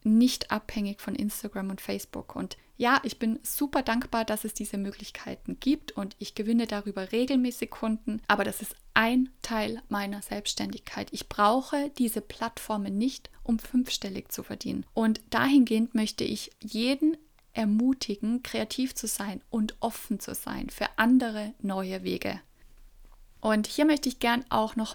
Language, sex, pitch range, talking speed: German, female, 210-240 Hz, 150 wpm